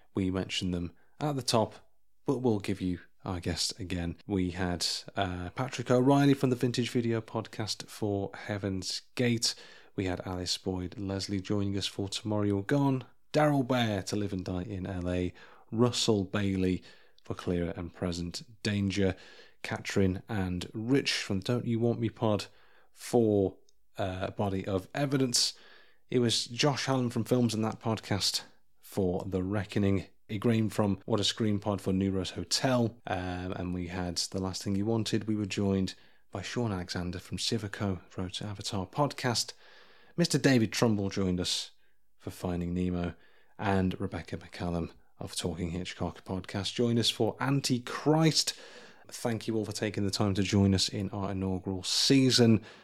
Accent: British